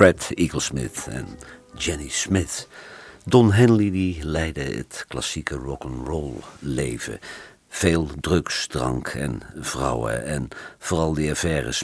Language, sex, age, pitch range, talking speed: Dutch, male, 50-69, 75-95 Hz, 110 wpm